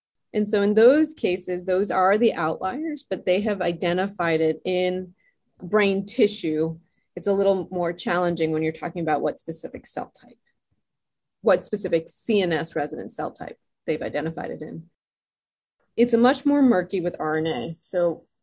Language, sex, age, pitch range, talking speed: English, female, 20-39, 165-210 Hz, 155 wpm